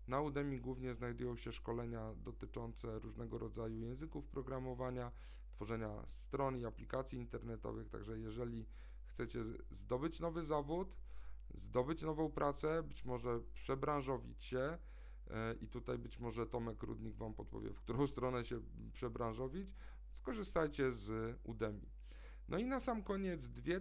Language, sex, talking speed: Polish, male, 130 wpm